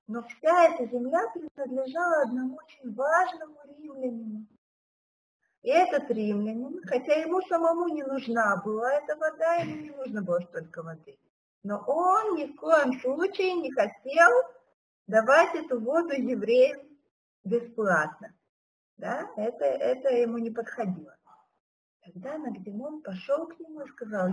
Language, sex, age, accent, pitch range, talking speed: Russian, female, 50-69, native, 215-320 Hz, 130 wpm